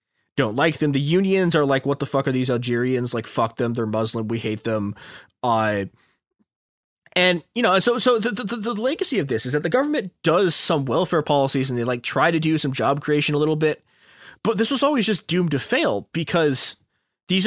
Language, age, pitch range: English, 20-39, 115-160 Hz